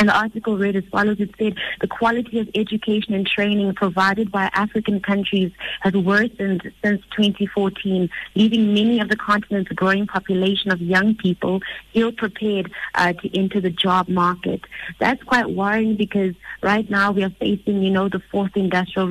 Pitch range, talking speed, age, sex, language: 185-210 Hz, 165 wpm, 30-49, female, English